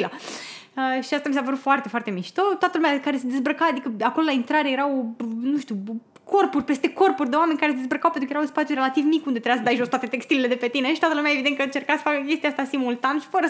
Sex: female